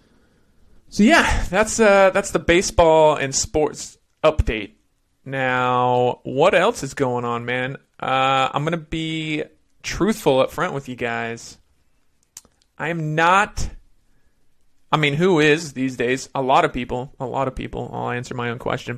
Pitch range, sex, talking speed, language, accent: 120-155 Hz, male, 160 wpm, English, American